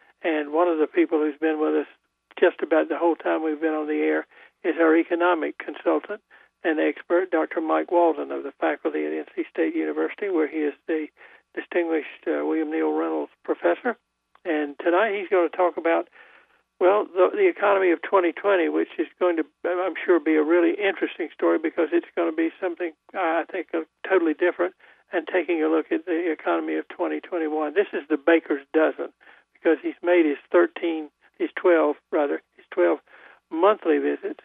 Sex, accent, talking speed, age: male, American, 185 wpm, 60-79